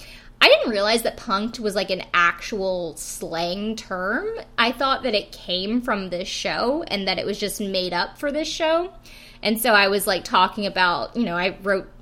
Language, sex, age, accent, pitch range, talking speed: English, female, 20-39, American, 185-240 Hz, 200 wpm